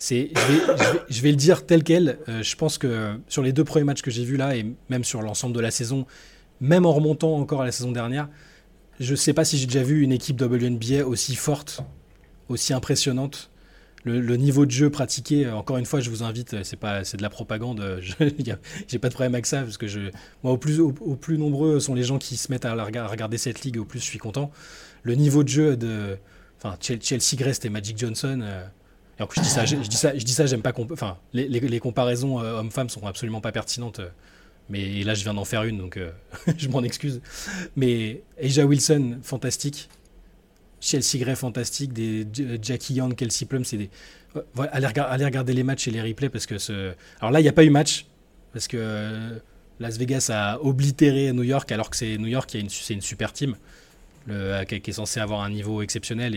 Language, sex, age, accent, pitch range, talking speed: French, male, 20-39, French, 110-140 Hz, 240 wpm